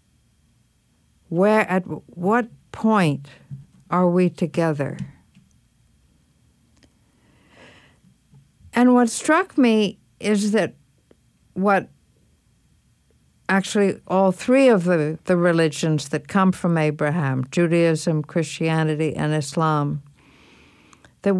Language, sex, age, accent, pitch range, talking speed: English, female, 60-79, American, 155-200 Hz, 85 wpm